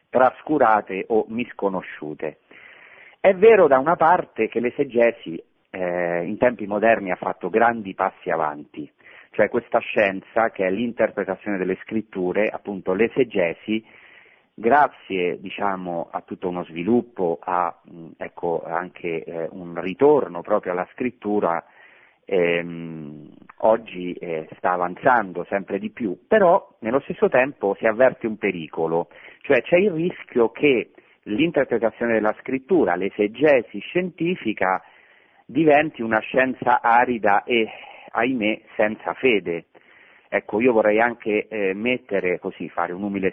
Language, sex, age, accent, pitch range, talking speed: Italian, male, 40-59, native, 95-120 Hz, 120 wpm